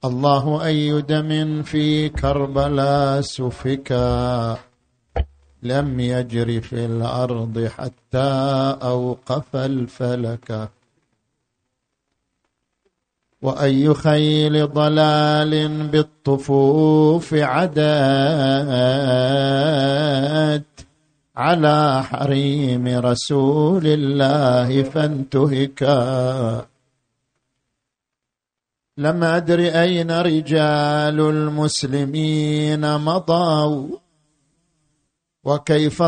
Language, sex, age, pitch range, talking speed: Arabic, male, 50-69, 135-155 Hz, 50 wpm